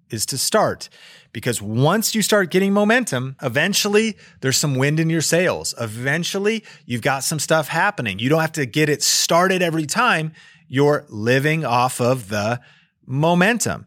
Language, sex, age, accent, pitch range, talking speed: English, male, 30-49, American, 110-155 Hz, 160 wpm